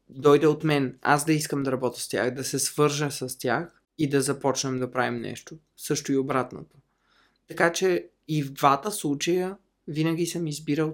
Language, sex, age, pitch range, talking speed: Bulgarian, male, 20-39, 135-160 Hz, 180 wpm